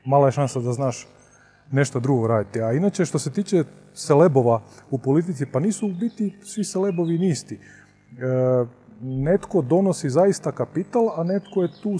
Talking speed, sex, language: 160 wpm, male, Croatian